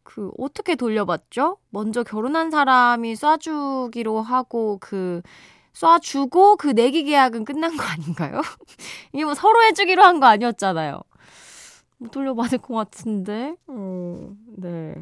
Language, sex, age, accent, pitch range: Korean, female, 20-39, native, 185-285 Hz